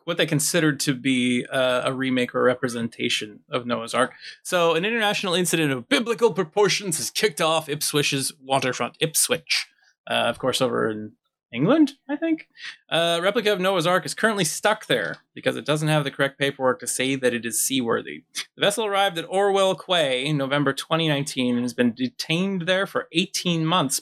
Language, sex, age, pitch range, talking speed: English, male, 20-39, 130-175 Hz, 185 wpm